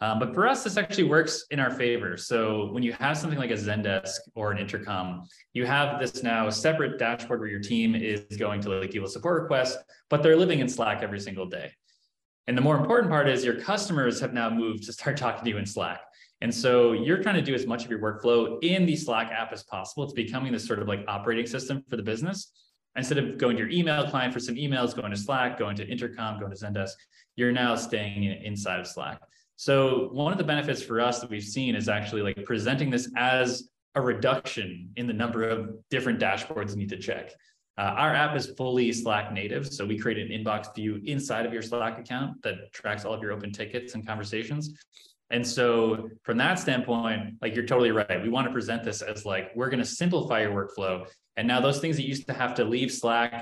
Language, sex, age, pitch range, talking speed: English, male, 20-39, 105-130 Hz, 230 wpm